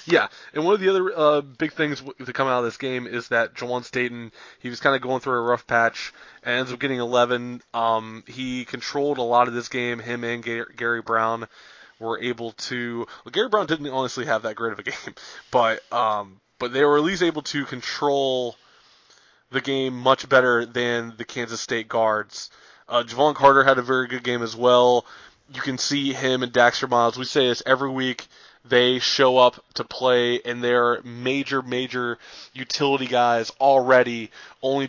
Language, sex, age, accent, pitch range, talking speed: English, male, 20-39, American, 120-135 Hz, 200 wpm